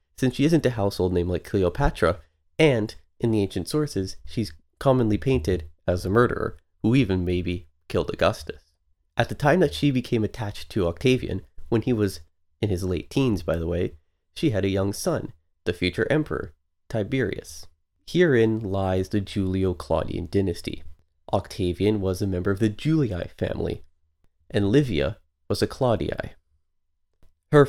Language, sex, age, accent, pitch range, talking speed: English, male, 30-49, American, 85-110 Hz, 155 wpm